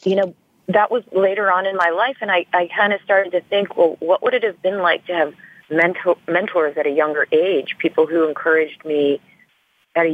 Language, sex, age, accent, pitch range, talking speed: English, female, 40-59, American, 150-180 Hz, 225 wpm